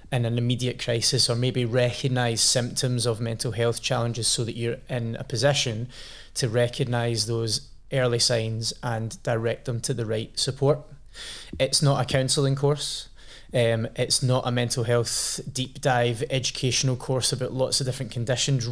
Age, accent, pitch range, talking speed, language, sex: 20-39, British, 115-130 Hz, 160 wpm, English, male